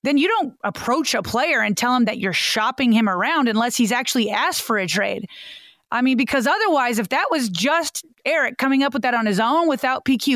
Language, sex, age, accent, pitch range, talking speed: English, female, 30-49, American, 225-290 Hz, 225 wpm